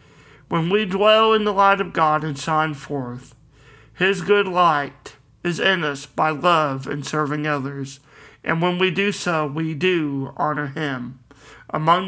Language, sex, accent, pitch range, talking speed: English, male, American, 140-175 Hz, 160 wpm